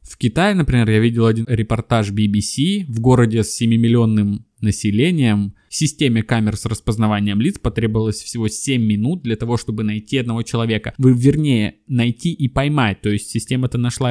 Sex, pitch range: male, 105-120 Hz